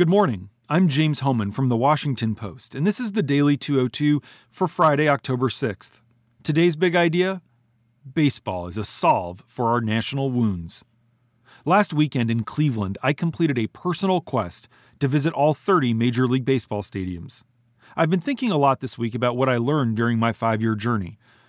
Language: English